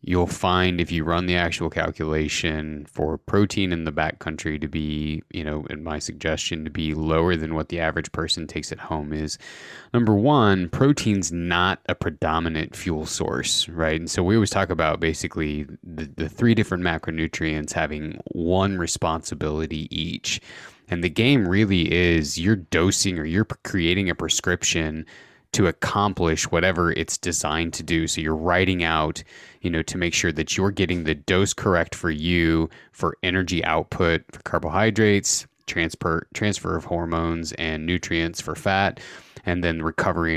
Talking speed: 160 wpm